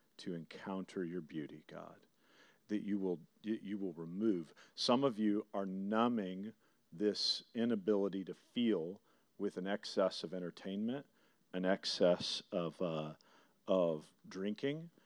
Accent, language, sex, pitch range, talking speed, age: American, English, male, 90-110 Hz, 125 wpm, 40-59